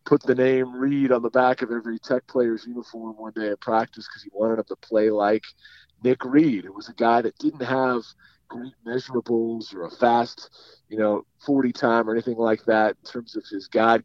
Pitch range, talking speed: 110-130 Hz, 215 wpm